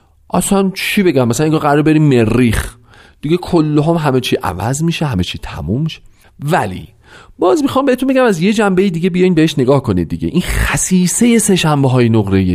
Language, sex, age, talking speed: Persian, male, 40-59, 180 wpm